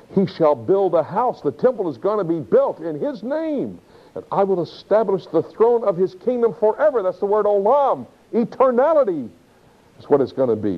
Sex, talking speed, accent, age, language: male, 200 wpm, American, 60-79, English